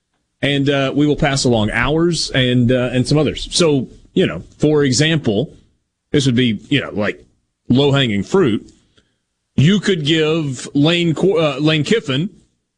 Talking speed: 155 wpm